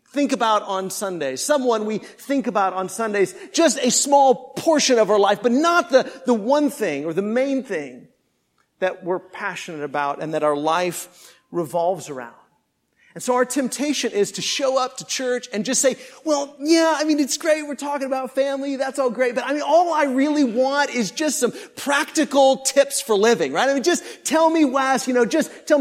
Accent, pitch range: American, 200-275 Hz